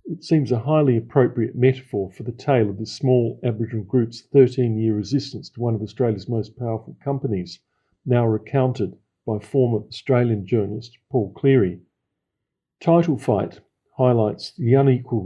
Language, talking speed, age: English, 145 wpm, 50-69